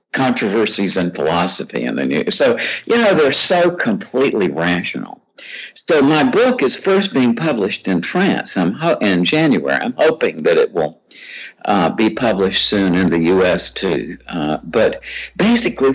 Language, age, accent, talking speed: English, 60-79, American, 160 wpm